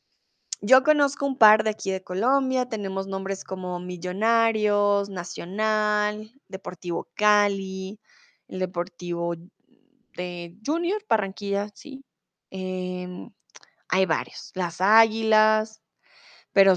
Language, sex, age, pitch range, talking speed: Spanish, female, 20-39, 195-245 Hz, 95 wpm